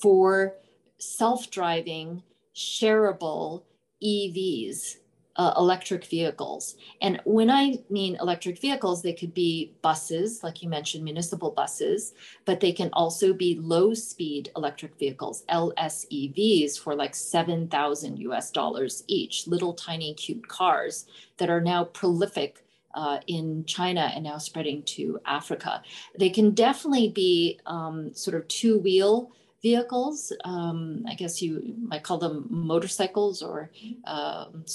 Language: English